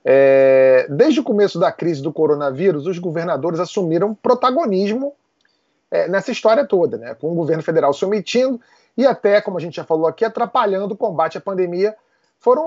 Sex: male